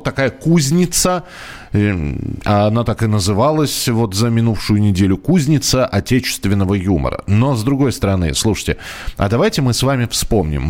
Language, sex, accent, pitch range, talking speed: Russian, male, native, 95-125 Hz, 135 wpm